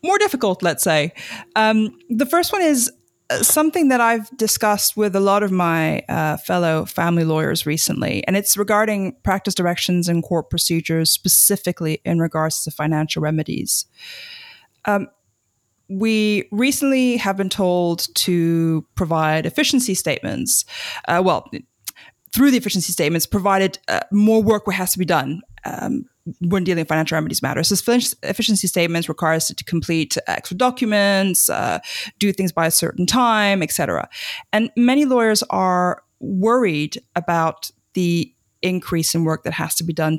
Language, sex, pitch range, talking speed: English, female, 165-215 Hz, 150 wpm